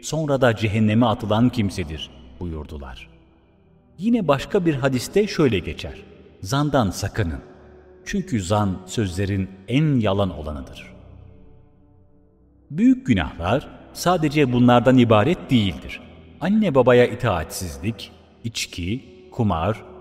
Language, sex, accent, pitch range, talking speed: Turkish, male, native, 95-140 Hz, 90 wpm